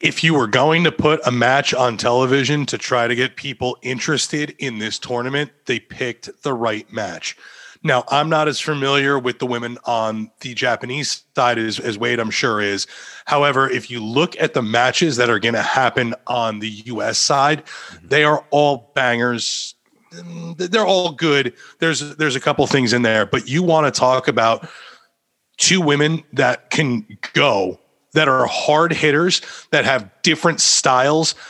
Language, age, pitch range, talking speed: English, 30-49, 120-150 Hz, 175 wpm